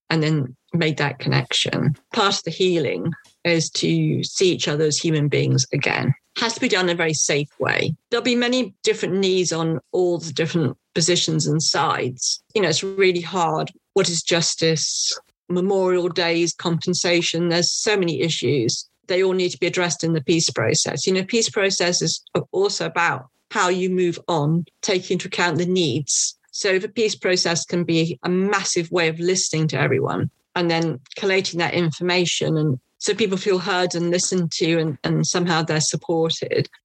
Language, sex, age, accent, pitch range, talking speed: English, female, 40-59, British, 155-185 Hz, 180 wpm